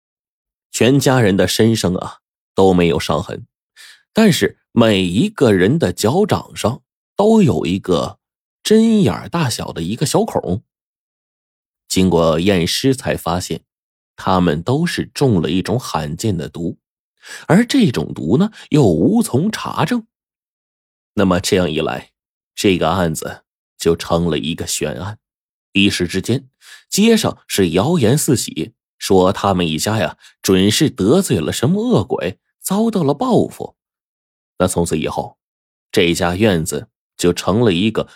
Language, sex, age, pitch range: Chinese, male, 20-39, 85-140 Hz